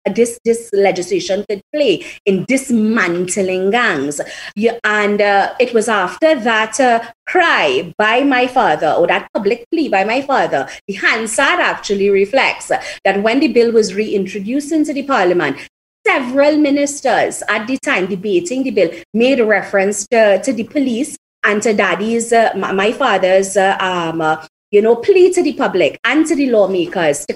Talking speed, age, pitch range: 170 wpm, 30-49, 195-260 Hz